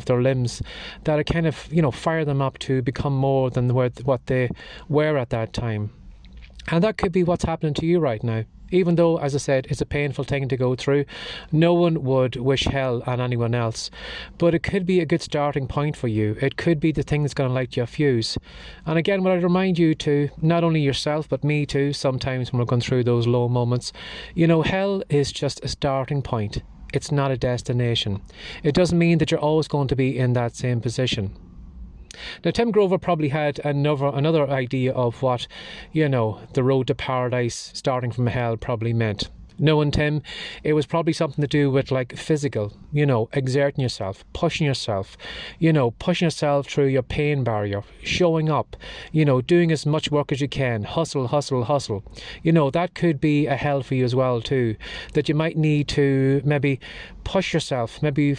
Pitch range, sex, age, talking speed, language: 125-155 Hz, male, 30-49, 205 wpm, English